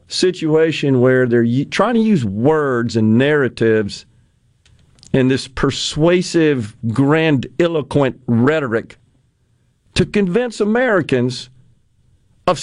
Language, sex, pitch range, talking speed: English, male, 125-200 Hz, 85 wpm